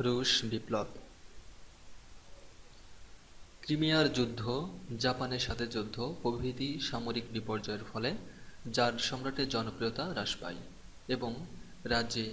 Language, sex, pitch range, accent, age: Bengali, male, 110-135 Hz, native, 30-49